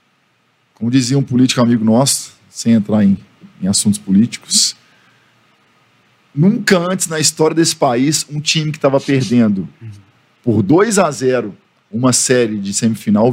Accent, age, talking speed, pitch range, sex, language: Brazilian, 50-69, 140 wpm, 110-145 Hz, male, Portuguese